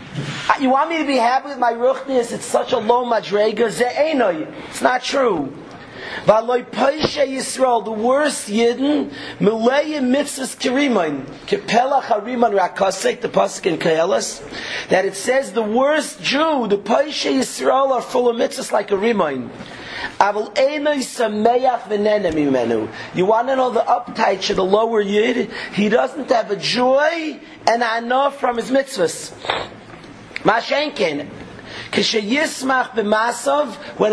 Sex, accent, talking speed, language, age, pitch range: male, American, 115 wpm, English, 40-59, 210-260 Hz